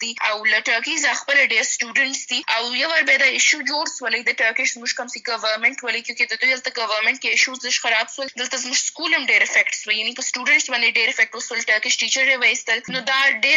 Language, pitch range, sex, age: Urdu, 230-285 Hz, female, 20-39